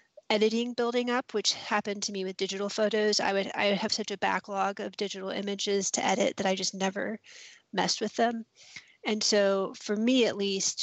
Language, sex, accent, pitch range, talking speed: English, female, American, 195-220 Hz, 200 wpm